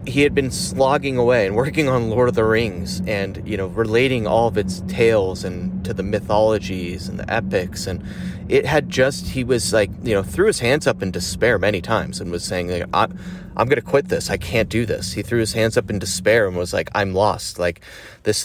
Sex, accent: male, American